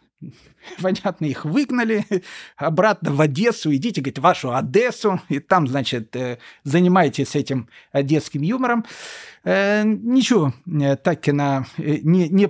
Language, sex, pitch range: Russian, male, 155-205 Hz